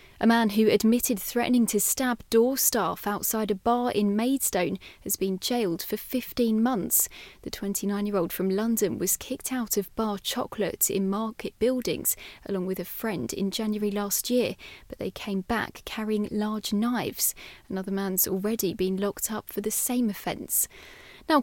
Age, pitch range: 20-39, 200-245 Hz